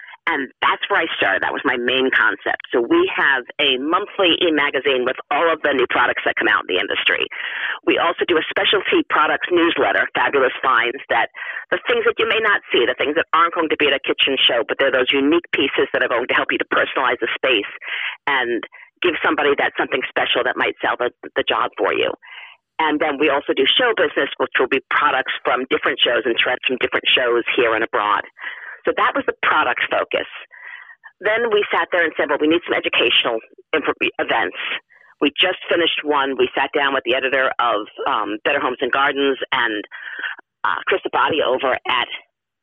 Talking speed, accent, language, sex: 205 wpm, American, English, female